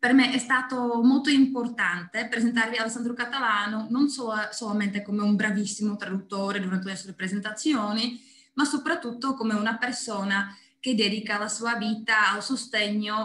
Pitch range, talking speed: 195-245 Hz, 145 wpm